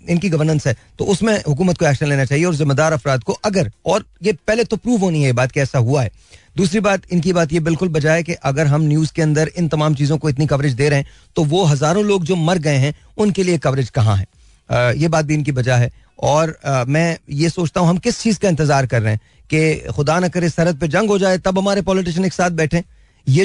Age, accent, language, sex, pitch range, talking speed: 40-59, native, Hindi, male, 150-195 Hz, 250 wpm